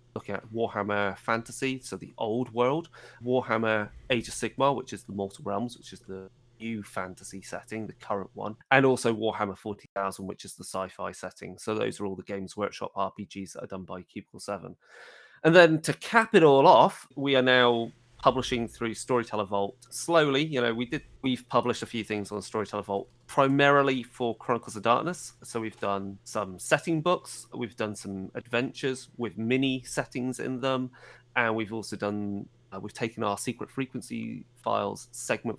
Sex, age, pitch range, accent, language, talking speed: male, 30-49, 105-125 Hz, British, English, 180 wpm